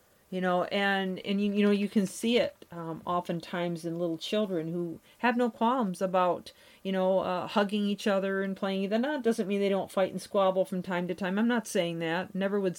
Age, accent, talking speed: 50-69, American, 220 wpm